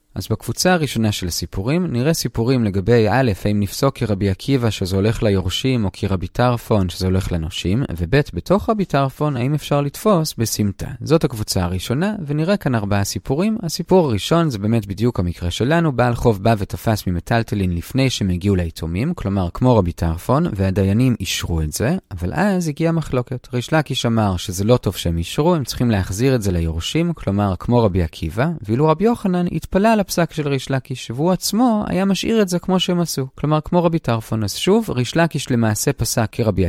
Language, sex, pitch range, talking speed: Hebrew, male, 100-165 Hz, 160 wpm